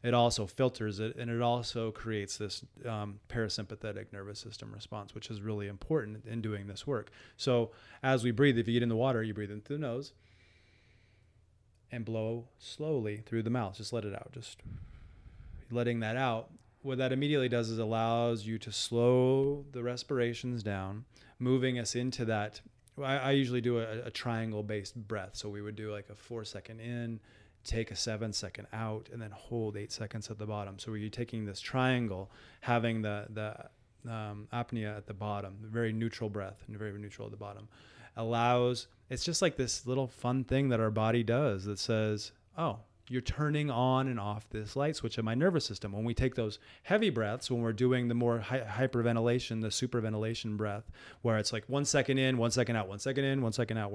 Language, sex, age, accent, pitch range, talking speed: English, male, 30-49, American, 105-125 Hz, 200 wpm